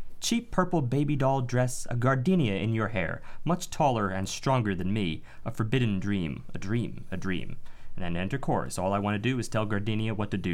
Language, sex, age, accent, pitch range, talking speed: English, male, 30-49, American, 110-155 Hz, 215 wpm